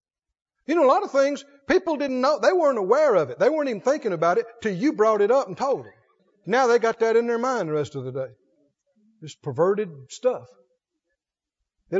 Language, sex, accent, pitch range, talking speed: English, male, American, 185-305 Hz, 220 wpm